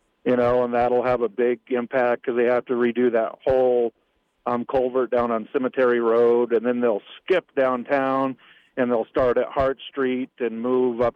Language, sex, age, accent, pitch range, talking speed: English, male, 40-59, American, 115-130 Hz, 195 wpm